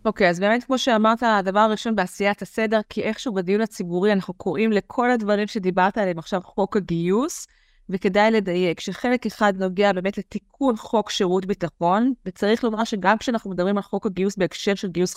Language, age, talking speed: Hebrew, 20-39, 175 wpm